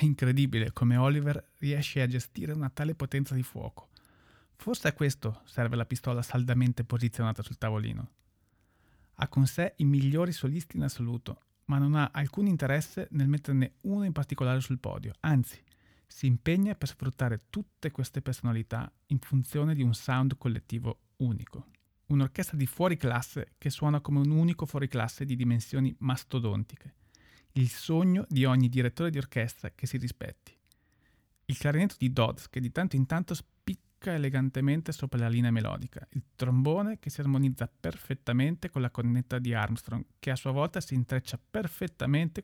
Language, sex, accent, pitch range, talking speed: Italian, male, native, 120-145 Hz, 160 wpm